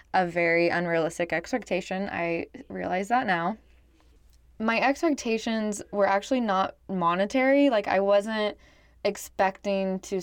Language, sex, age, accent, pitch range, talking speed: English, female, 20-39, American, 185-225 Hz, 110 wpm